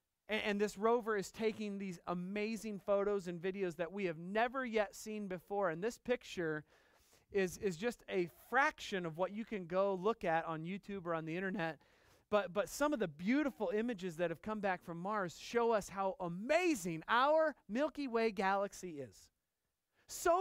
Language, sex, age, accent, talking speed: English, male, 40-59, American, 180 wpm